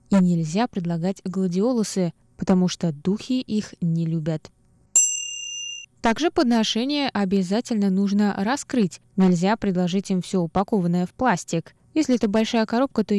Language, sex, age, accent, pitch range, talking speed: Russian, female, 20-39, native, 185-240 Hz, 125 wpm